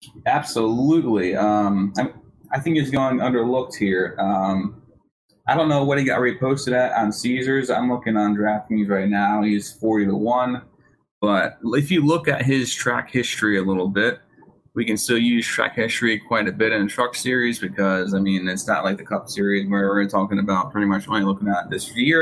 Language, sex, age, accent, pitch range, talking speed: English, male, 20-39, American, 100-130 Hz, 200 wpm